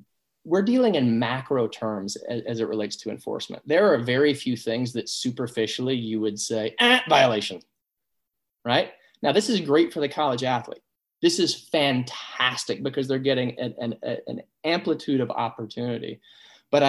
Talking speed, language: 155 wpm, English